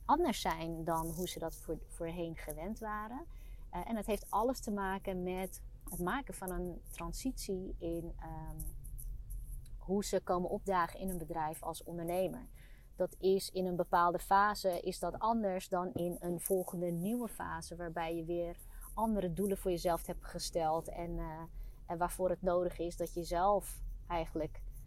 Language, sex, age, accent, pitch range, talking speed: Dutch, female, 30-49, Dutch, 170-195 Hz, 160 wpm